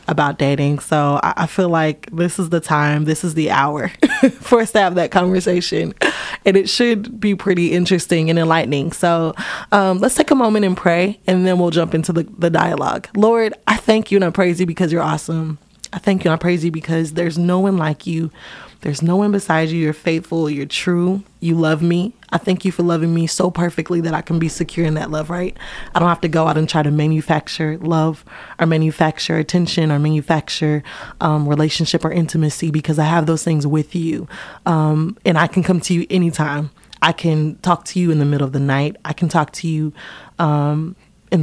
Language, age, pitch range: English, 20-39, 155-180 Hz